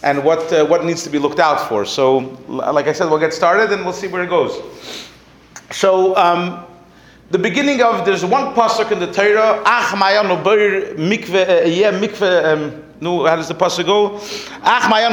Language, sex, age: English, male, 40-59